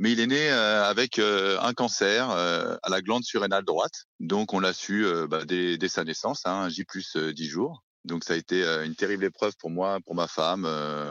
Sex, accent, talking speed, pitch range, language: male, French, 230 wpm, 90-110 Hz, French